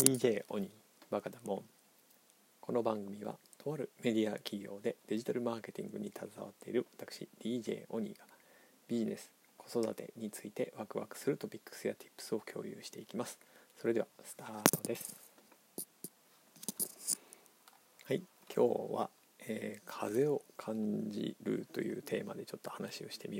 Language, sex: Japanese, male